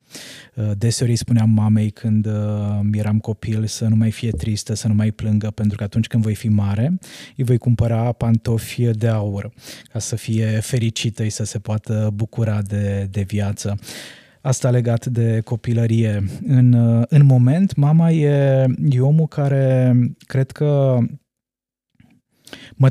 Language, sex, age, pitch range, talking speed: Romanian, male, 20-39, 110-125 Hz, 145 wpm